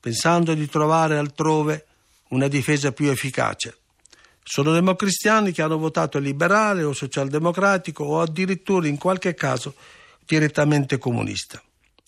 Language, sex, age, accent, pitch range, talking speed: Italian, male, 50-69, native, 130-170 Hz, 115 wpm